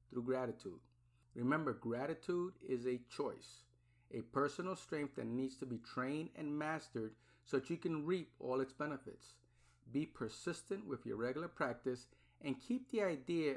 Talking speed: 155 wpm